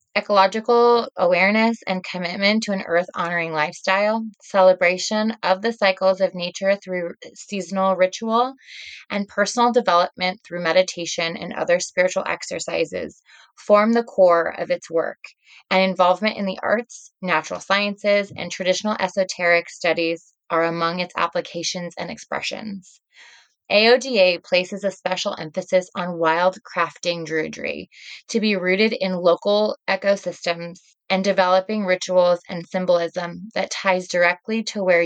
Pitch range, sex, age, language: 175-205 Hz, female, 20-39, English